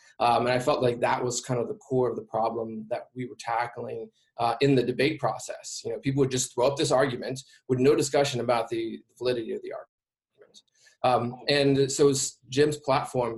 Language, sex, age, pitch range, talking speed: English, male, 20-39, 120-140 Hz, 205 wpm